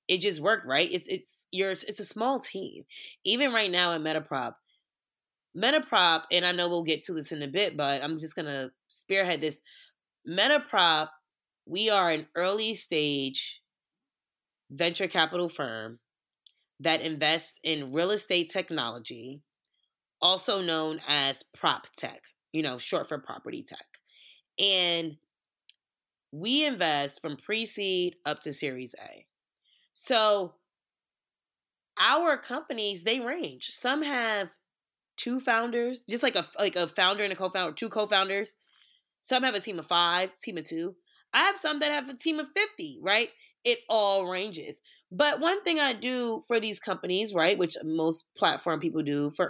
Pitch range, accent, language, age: 160-230 Hz, American, English, 20-39